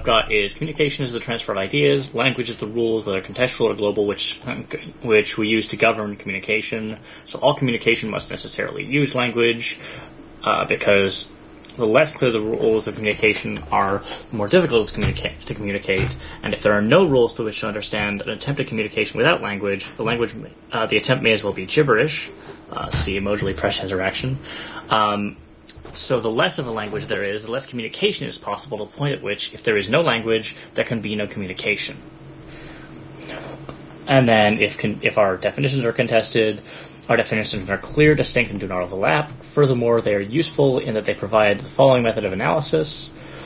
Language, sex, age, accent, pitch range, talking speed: English, male, 10-29, American, 105-135 Hz, 190 wpm